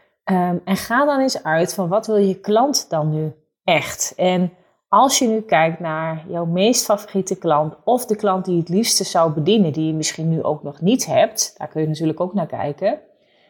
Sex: female